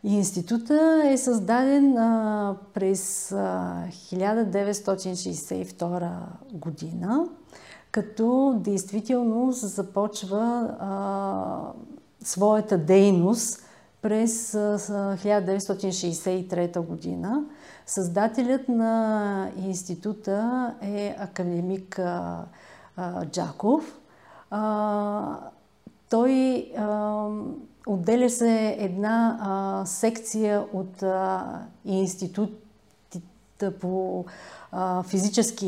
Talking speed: 55 wpm